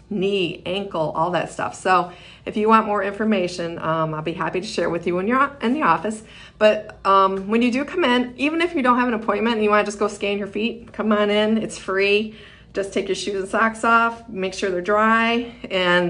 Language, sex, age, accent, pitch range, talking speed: English, female, 40-59, American, 170-220 Hz, 240 wpm